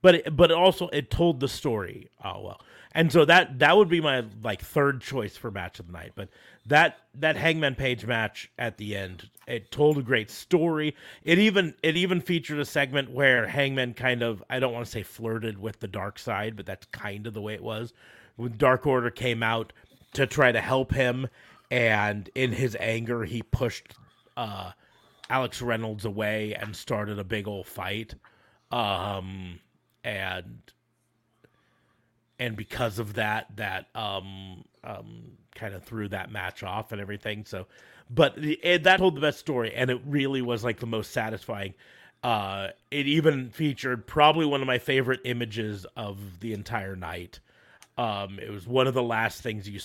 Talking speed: 180 wpm